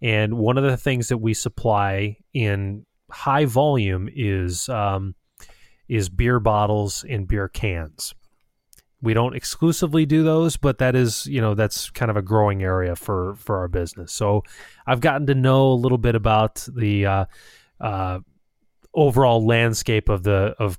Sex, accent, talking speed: male, American, 160 wpm